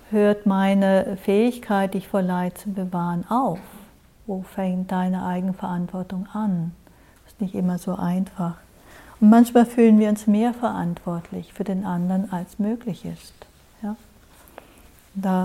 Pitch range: 185-215 Hz